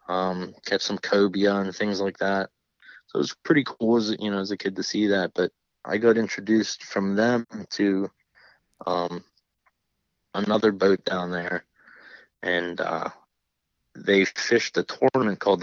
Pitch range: 90-100 Hz